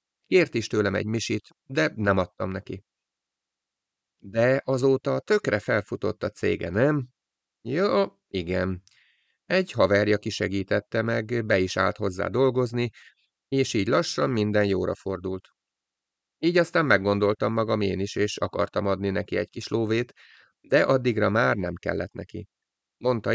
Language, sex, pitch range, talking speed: Hungarian, male, 100-120 Hz, 140 wpm